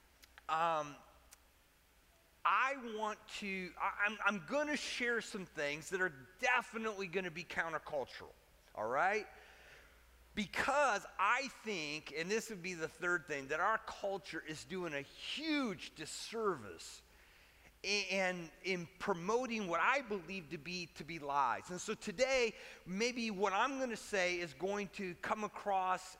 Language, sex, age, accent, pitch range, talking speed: English, male, 40-59, American, 170-220 Hz, 145 wpm